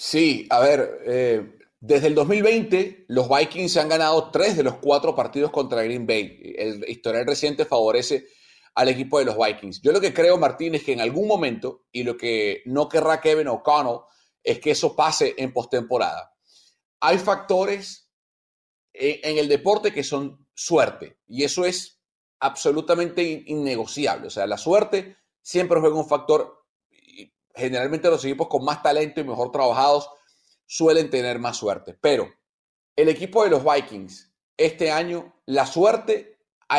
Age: 30-49